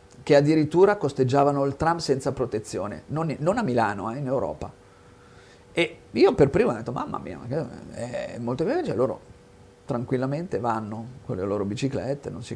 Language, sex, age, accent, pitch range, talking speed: Italian, male, 40-59, native, 115-145 Hz, 180 wpm